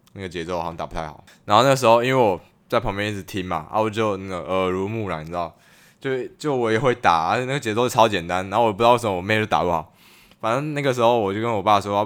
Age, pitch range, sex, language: 10-29, 95-120 Hz, male, Chinese